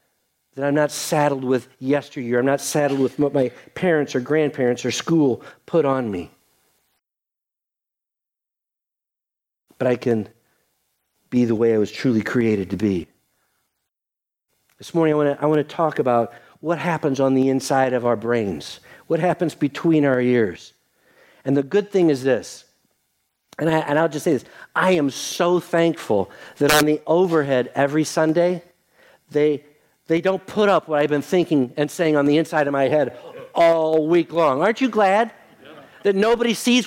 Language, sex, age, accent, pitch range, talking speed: English, male, 50-69, American, 140-205 Hz, 165 wpm